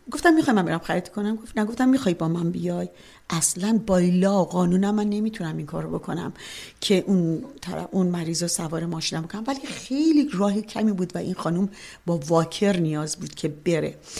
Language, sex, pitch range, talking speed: Persian, female, 170-230 Hz, 175 wpm